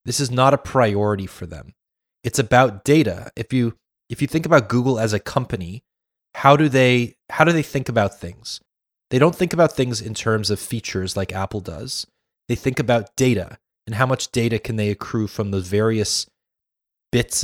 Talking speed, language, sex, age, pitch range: 195 wpm, English, male, 30-49, 100-130 Hz